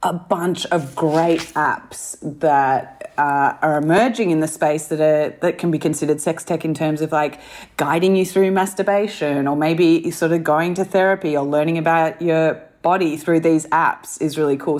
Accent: Australian